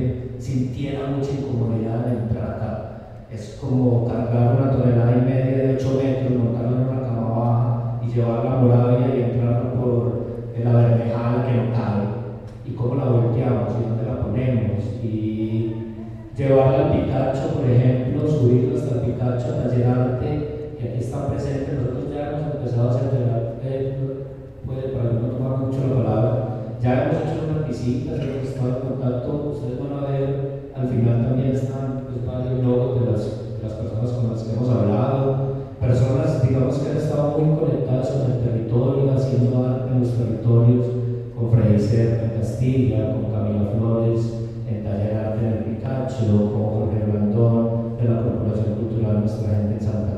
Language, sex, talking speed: Spanish, male, 165 wpm